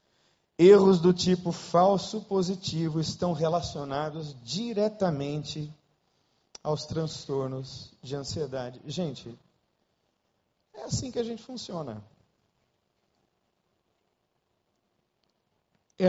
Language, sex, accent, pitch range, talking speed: Portuguese, male, Brazilian, 135-160 Hz, 75 wpm